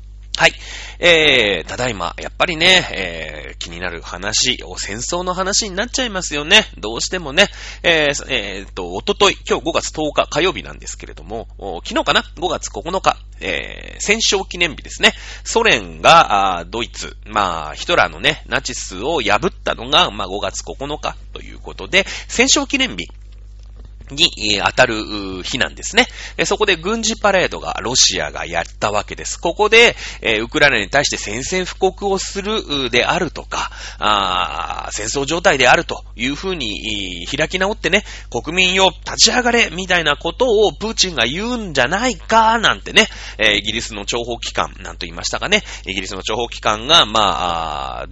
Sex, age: male, 30-49